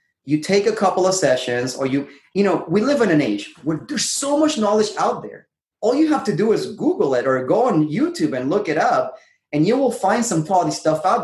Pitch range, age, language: 140-210 Hz, 30-49, English